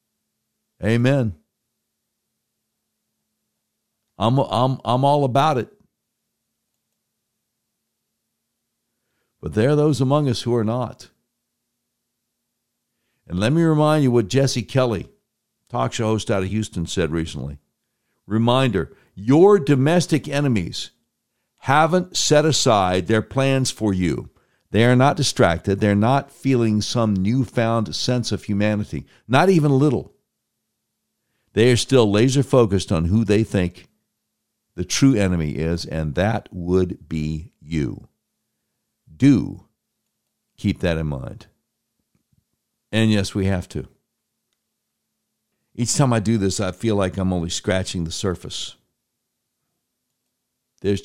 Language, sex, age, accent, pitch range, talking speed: English, male, 60-79, American, 90-125 Hz, 120 wpm